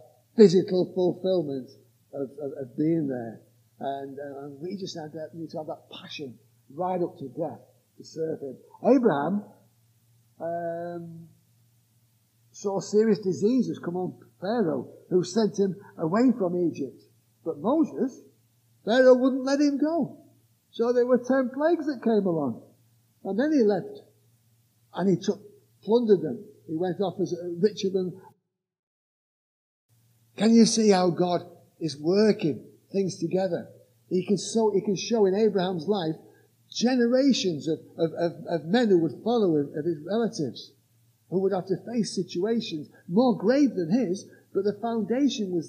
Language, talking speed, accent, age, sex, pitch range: English, 150 wpm, British, 50-69, male, 150-215 Hz